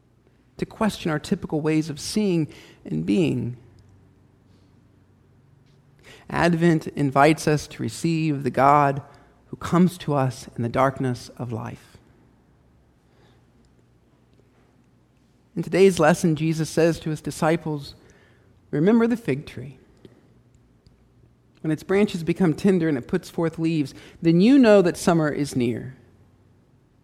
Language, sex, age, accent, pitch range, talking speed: English, male, 50-69, American, 120-165 Hz, 120 wpm